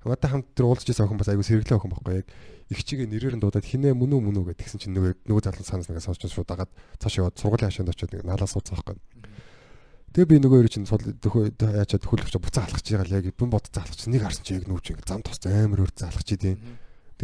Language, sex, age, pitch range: Korean, male, 20-39, 95-125 Hz